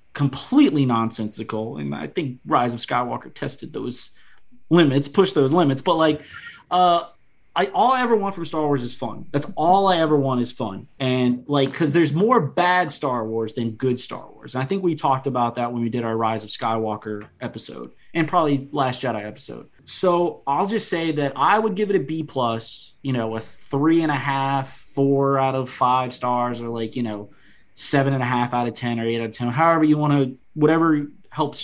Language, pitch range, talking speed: English, 125-155 Hz, 210 wpm